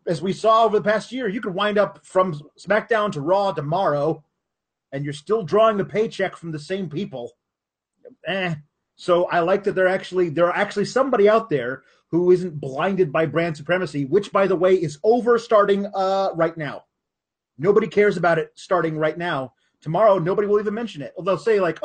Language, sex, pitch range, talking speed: English, male, 150-195 Hz, 195 wpm